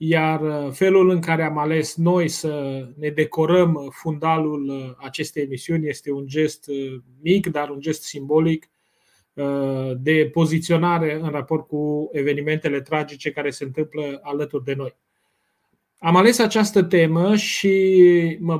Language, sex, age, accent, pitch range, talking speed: Romanian, male, 30-49, native, 145-175 Hz, 130 wpm